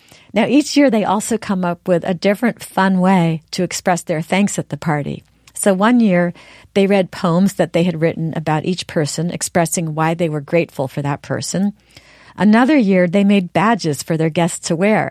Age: 50-69